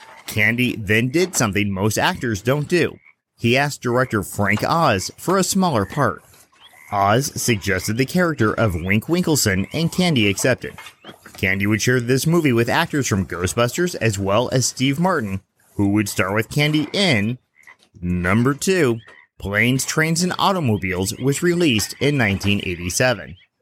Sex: male